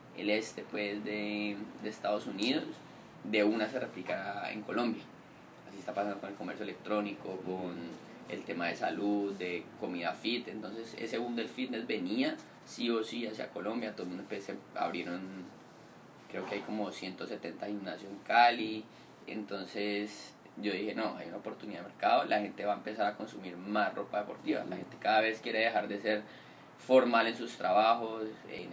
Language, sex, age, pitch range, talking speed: Spanish, male, 20-39, 100-115 Hz, 175 wpm